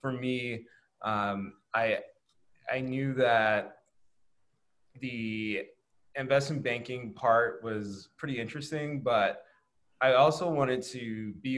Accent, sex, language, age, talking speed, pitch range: American, male, English, 20-39, 105 wpm, 105-125 Hz